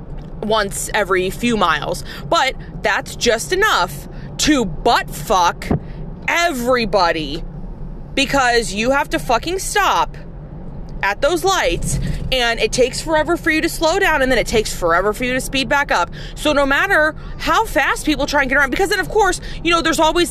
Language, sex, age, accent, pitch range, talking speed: English, female, 20-39, American, 185-280 Hz, 175 wpm